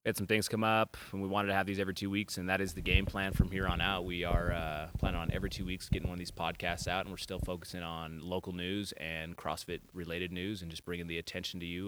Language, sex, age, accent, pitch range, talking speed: English, male, 30-49, American, 90-105 Hz, 285 wpm